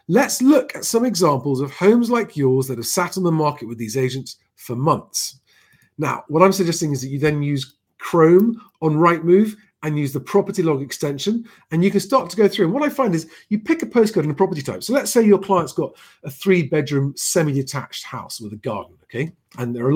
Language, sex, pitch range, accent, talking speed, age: English, male, 135-200 Hz, British, 230 wpm, 40-59